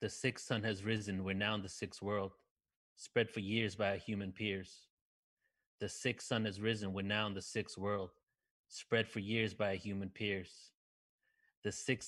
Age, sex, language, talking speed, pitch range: 30-49, male, English, 190 wpm, 105-125 Hz